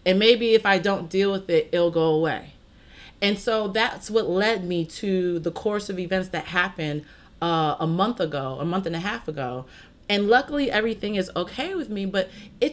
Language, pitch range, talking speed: English, 175-260 Hz, 205 wpm